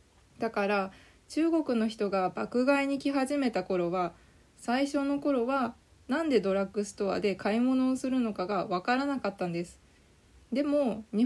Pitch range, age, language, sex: 190-260 Hz, 20-39, Japanese, female